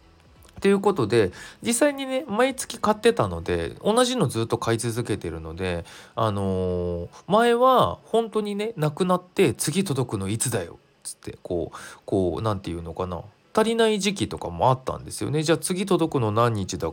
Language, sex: Japanese, male